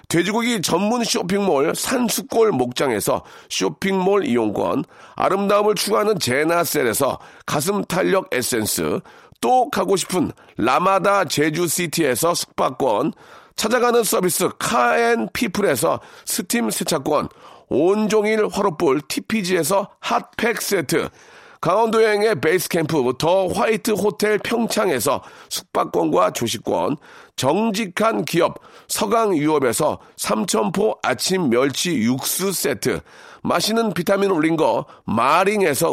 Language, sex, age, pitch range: Korean, male, 40-59, 180-230 Hz